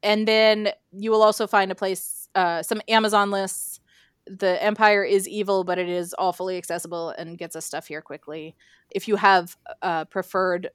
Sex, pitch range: female, 175-210 Hz